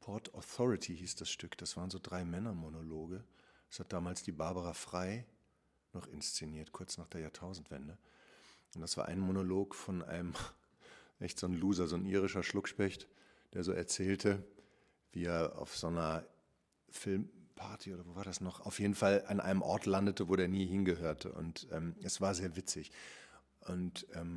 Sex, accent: male, German